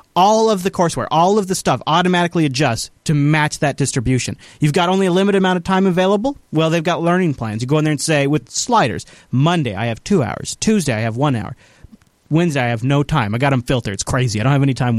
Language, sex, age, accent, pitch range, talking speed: English, male, 30-49, American, 130-180 Hz, 250 wpm